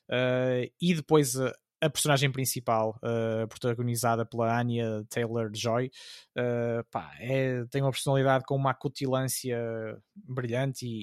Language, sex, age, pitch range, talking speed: Portuguese, male, 20-39, 115-135 Hz, 120 wpm